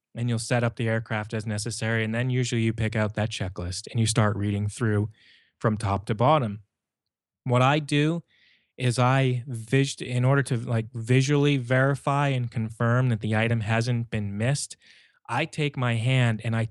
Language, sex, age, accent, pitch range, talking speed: English, male, 20-39, American, 110-135 Hz, 185 wpm